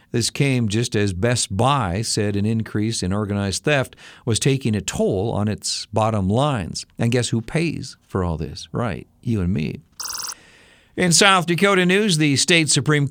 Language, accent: Japanese, American